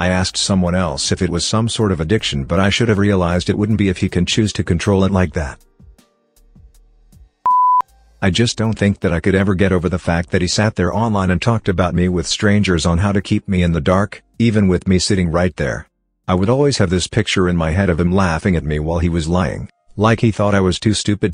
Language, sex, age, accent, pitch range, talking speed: English, male, 50-69, American, 90-105 Hz, 255 wpm